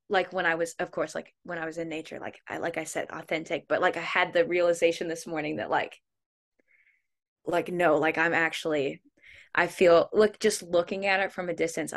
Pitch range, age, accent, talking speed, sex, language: 170-190 Hz, 10-29, American, 215 wpm, female, English